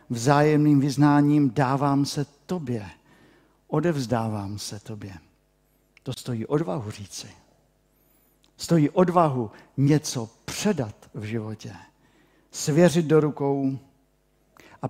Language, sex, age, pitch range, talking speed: Czech, male, 50-69, 125-160 Hz, 90 wpm